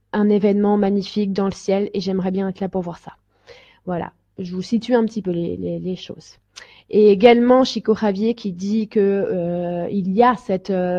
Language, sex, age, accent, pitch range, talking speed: French, female, 20-39, French, 200-255 Hz, 205 wpm